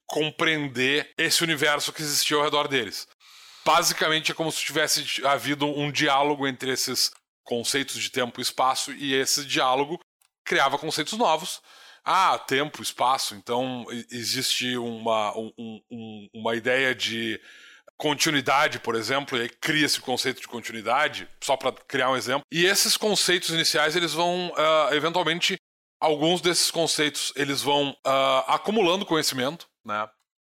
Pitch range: 130-165 Hz